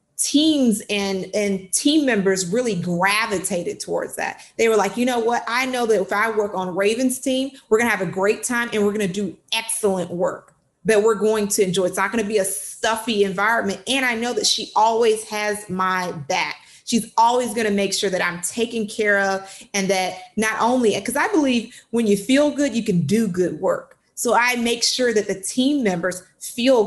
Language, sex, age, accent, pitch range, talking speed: English, female, 30-49, American, 190-235 Hz, 210 wpm